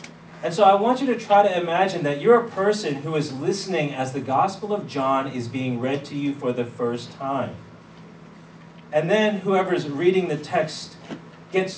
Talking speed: 190 wpm